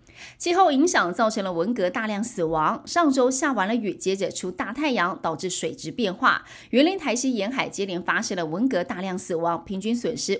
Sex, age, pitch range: female, 30-49, 185-260 Hz